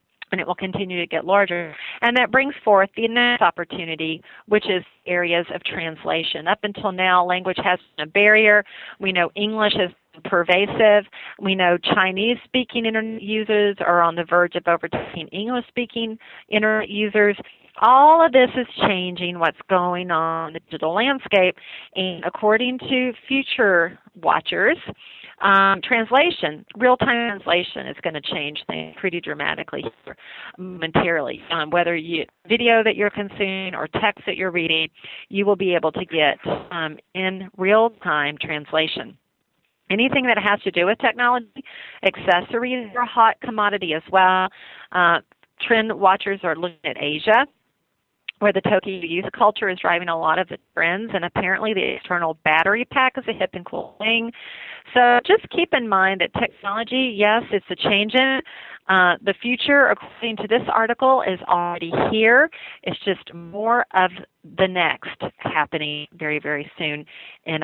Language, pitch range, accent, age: English, 175-225 Hz, American, 40-59